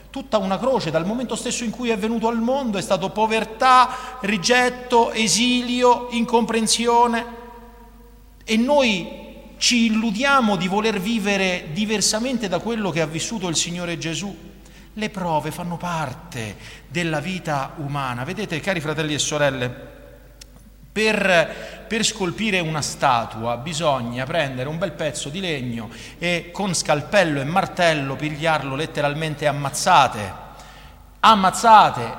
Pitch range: 150-220 Hz